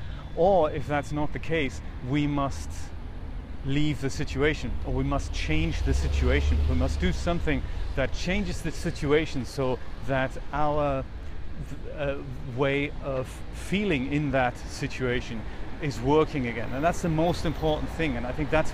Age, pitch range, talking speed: 30-49, 125-155 Hz, 155 wpm